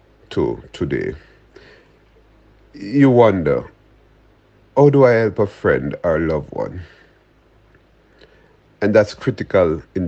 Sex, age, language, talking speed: male, 50-69, English, 105 wpm